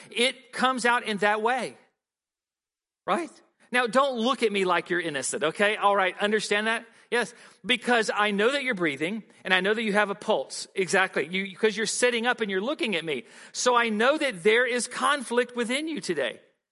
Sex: male